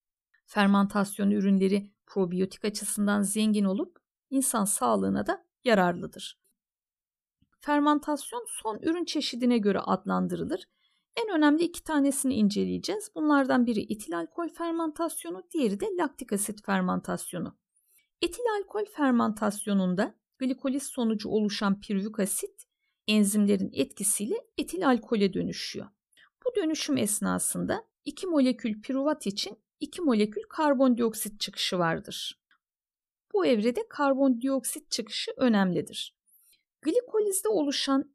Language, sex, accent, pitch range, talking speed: Turkish, female, native, 200-295 Hz, 100 wpm